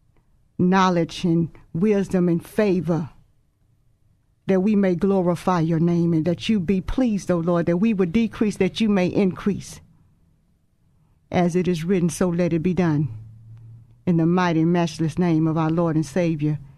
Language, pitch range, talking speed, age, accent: English, 160-185 Hz, 160 wpm, 50-69, American